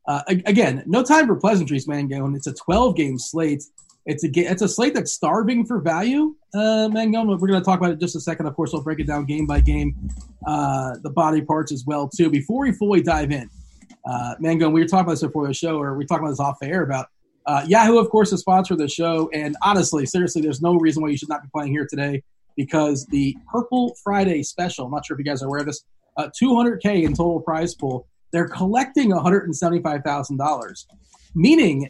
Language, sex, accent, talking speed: English, male, American, 240 wpm